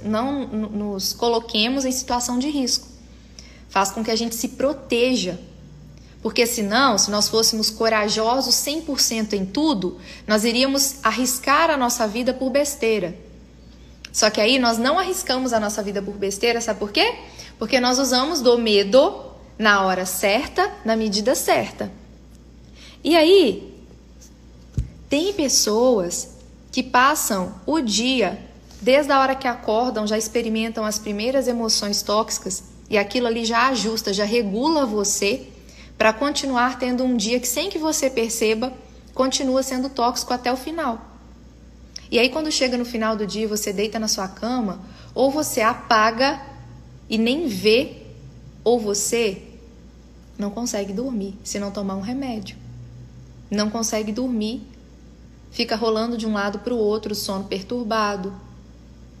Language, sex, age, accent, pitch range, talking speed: Portuguese, female, 20-39, Brazilian, 205-255 Hz, 145 wpm